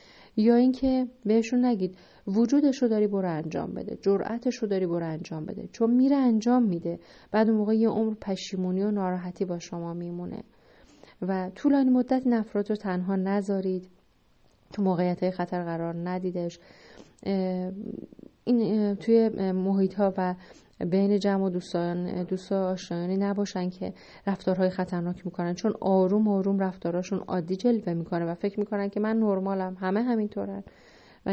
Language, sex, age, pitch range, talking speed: Persian, female, 30-49, 175-210 Hz, 140 wpm